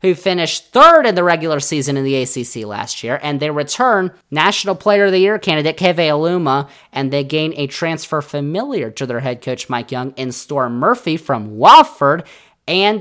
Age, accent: 20-39, American